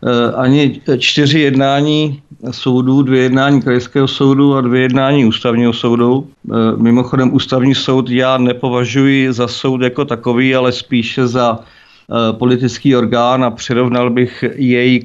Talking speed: 125 wpm